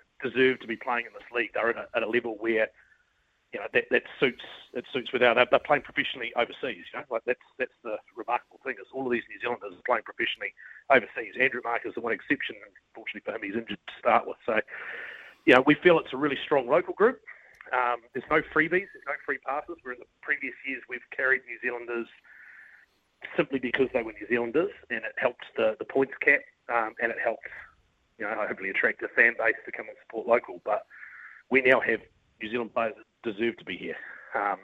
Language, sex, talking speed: English, male, 225 wpm